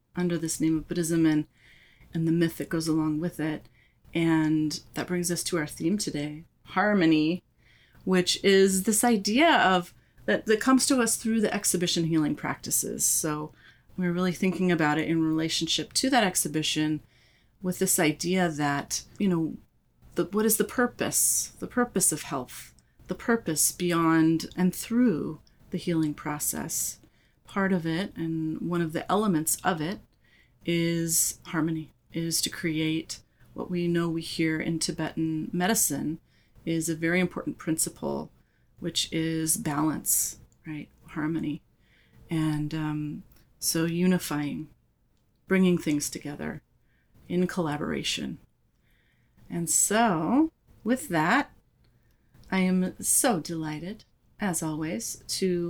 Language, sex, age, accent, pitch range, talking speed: English, female, 30-49, American, 155-185 Hz, 135 wpm